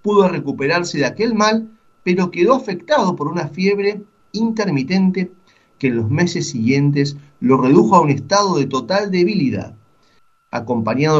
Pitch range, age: 120-185 Hz, 40-59